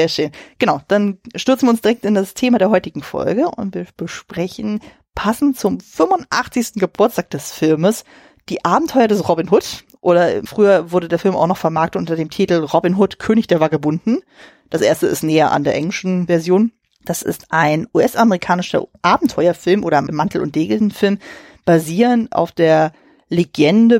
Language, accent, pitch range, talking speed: German, German, 160-215 Hz, 160 wpm